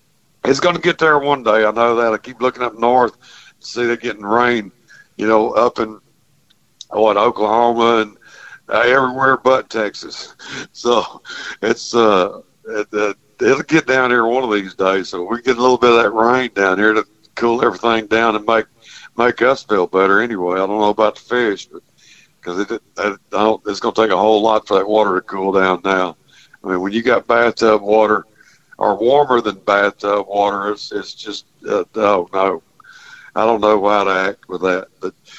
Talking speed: 200 wpm